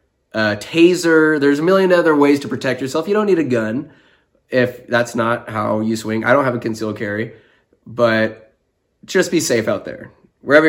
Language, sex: English, male